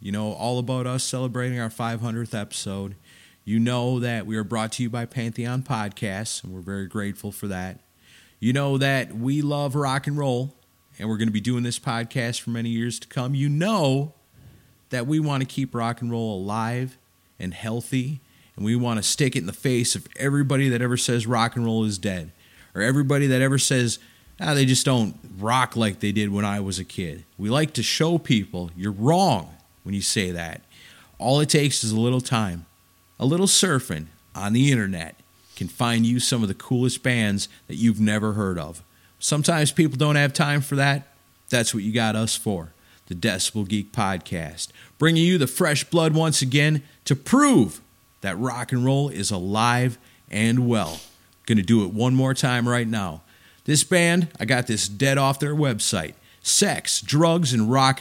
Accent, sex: American, male